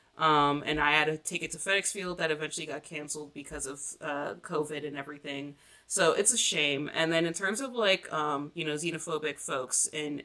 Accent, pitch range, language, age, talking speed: American, 150-175 Hz, English, 20-39, 205 wpm